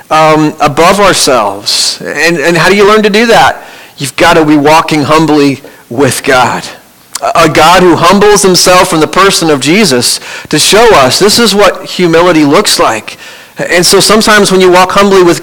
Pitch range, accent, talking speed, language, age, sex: 140-175 Hz, American, 185 wpm, English, 40-59, male